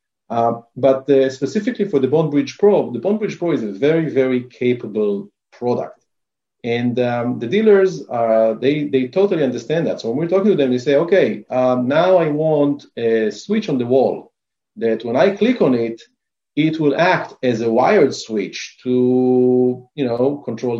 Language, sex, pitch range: English, male, 115-150 Hz